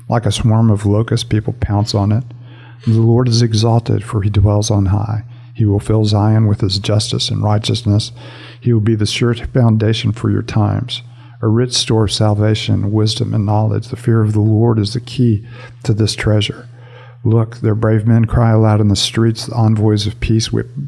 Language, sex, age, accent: English, male, 50-69, American